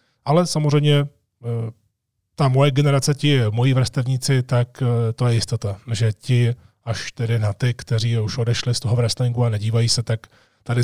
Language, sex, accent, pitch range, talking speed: Czech, male, native, 115-135 Hz, 160 wpm